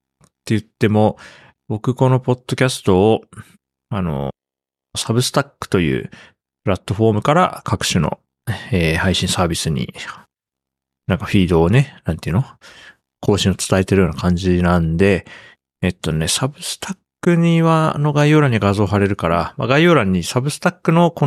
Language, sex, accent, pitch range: Japanese, male, native, 90-115 Hz